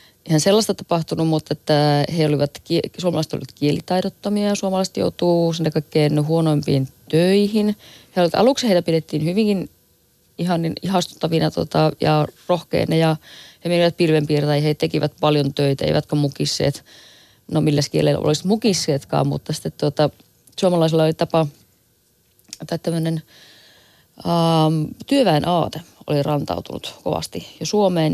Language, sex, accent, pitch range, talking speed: Finnish, female, native, 145-170 Hz, 125 wpm